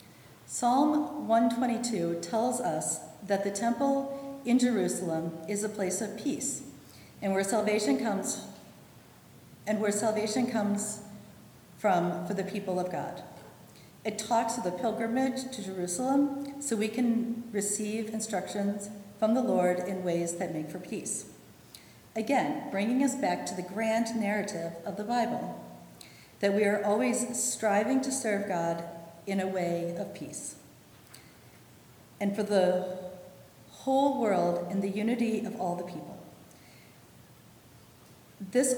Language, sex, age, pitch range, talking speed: English, female, 40-59, 180-235 Hz, 135 wpm